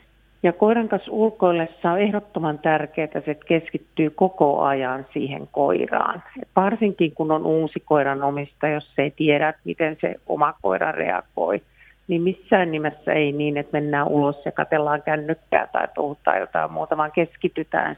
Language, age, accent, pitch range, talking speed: Finnish, 50-69, native, 145-175 Hz, 150 wpm